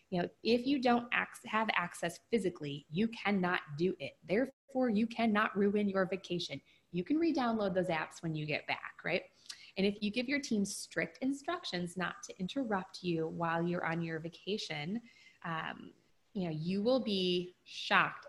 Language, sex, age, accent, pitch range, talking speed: English, female, 20-39, American, 170-235 Hz, 170 wpm